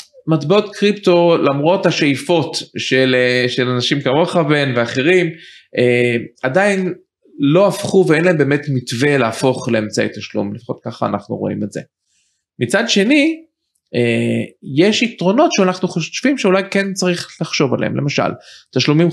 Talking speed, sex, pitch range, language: 130 wpm, male, 125-180 Hz, Hebrew